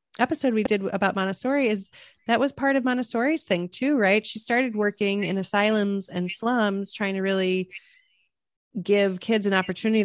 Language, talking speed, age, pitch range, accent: English, 165 wpm, 30-49, 180-220 Hz, American